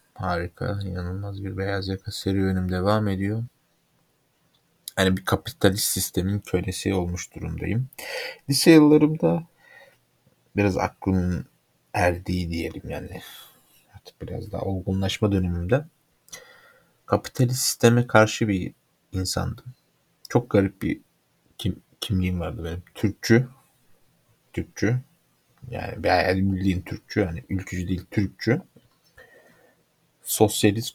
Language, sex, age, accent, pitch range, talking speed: Turkish, male, 50-69, native, 90-120 Hz, 100 wpm